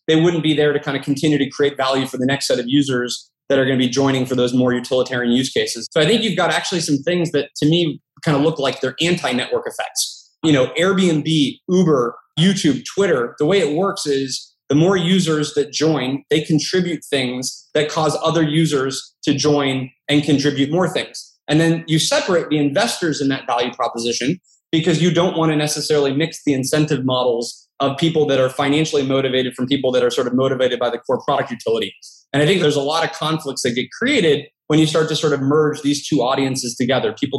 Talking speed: 220 wpm